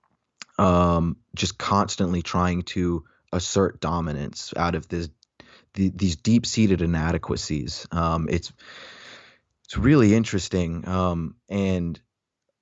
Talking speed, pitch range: 100 wpm, 85-100 Hz